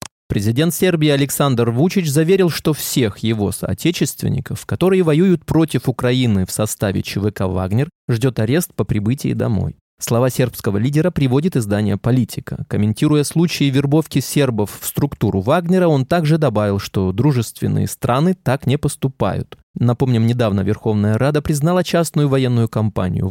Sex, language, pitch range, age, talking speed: male, Russian, 115-160 Hz, 20-39, 135 wpm